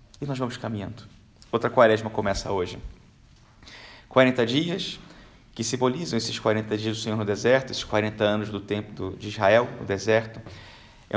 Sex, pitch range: male, 105-125 Hz